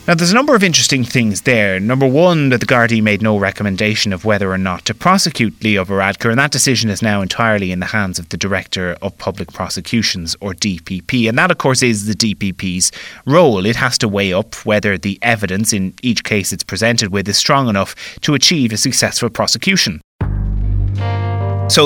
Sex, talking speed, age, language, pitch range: male, 200 wpm, 30-49, English, 100-125 Hz